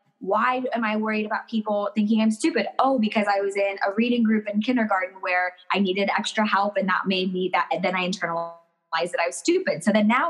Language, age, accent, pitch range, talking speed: English, 20-39, American, 190-250 Hz, 235 wpm